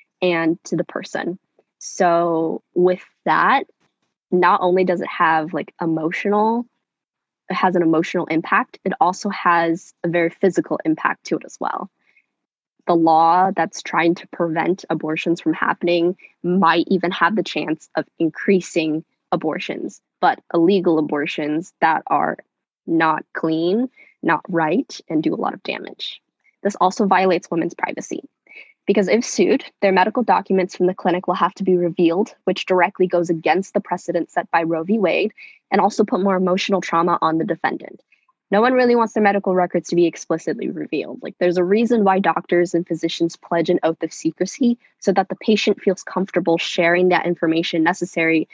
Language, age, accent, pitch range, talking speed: English, 10-29, American, 165-195 Hz, 165 wpm